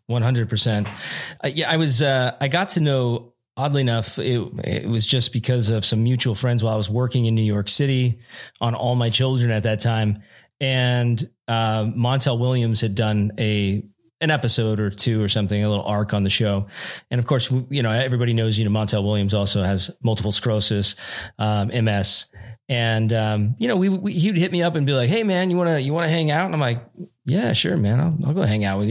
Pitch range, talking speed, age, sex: 110-140 Hz, 225 wpm, 30-49, male